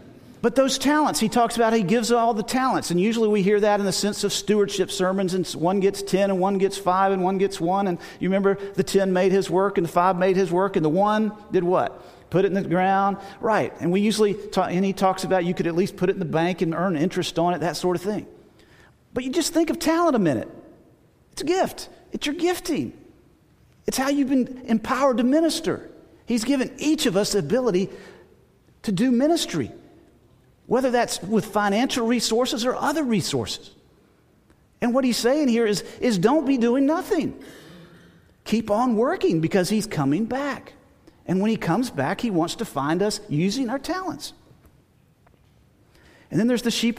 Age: 40-59